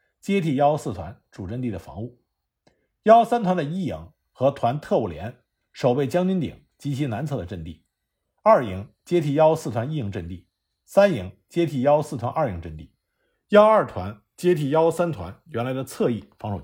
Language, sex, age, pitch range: Chinese, male, 50-69, 100-165 Hz